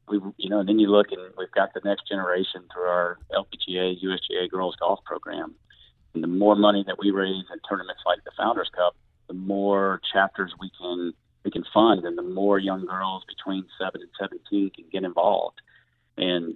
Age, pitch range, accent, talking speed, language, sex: 40-59, 90-100 Hz, American, 195 wpm, English, male